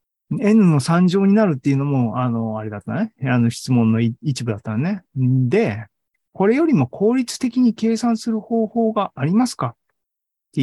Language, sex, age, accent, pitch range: Japanese, male, 40-59, native, 120-190 Hz